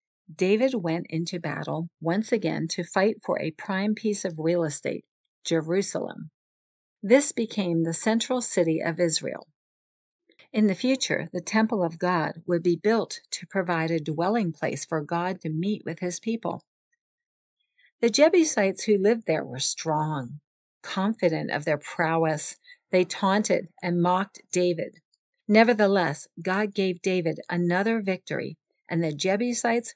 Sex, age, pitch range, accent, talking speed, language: female, 50-69, 165-220 Hz, American, 140 wpm, English